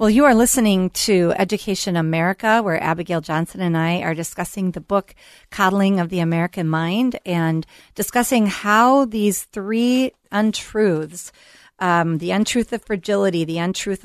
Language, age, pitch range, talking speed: English, 40-59, 165-205 Hz, 145 wpm